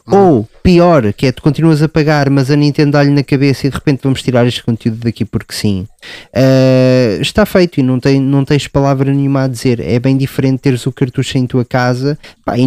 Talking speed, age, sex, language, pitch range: 210 wpm, 20-39, male, Portuguese, 130-160 Hz